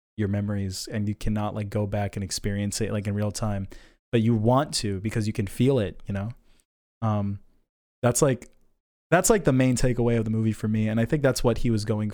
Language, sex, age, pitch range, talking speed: English, male, 20-39, 105-130 Hz, 230 wpm